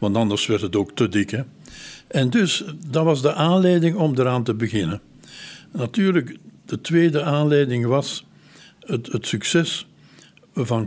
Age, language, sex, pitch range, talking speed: 60-79, Dutch, male, 110-145 Hz, 150 wpm